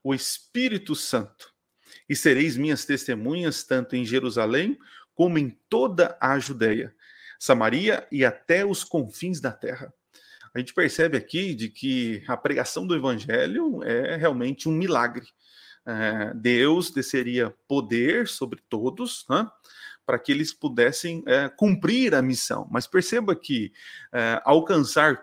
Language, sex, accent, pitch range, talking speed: Portuguese, male, Brazilian, 120-165 Hz, 135 wpm